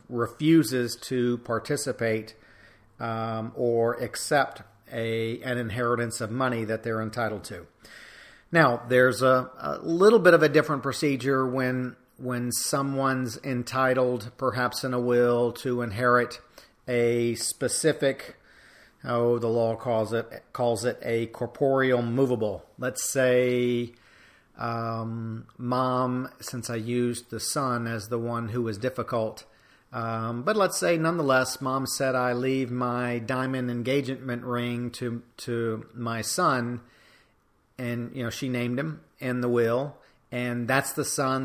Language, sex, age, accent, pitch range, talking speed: English, male, 40-59, American, 115-130 Hz, 135 wpm